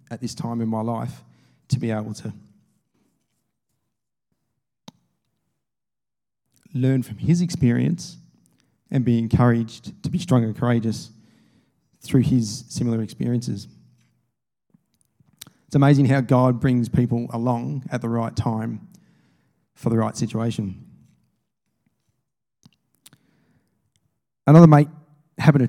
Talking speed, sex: 105 wpm, male